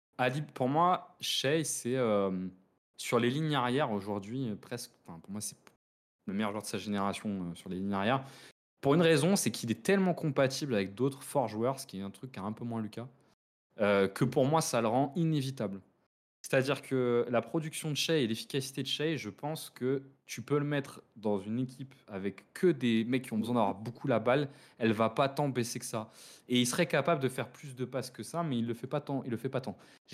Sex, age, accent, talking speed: male, 20-39, French, 235 wpm